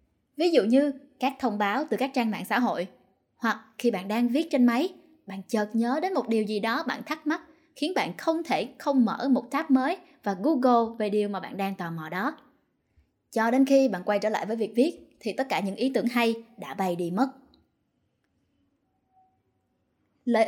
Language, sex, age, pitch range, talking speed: Vietnamese, female, 10-29, 210-275 Hz, 210 wpm